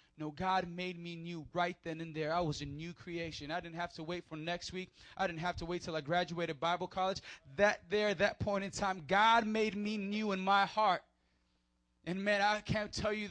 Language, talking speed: English, 230 wpm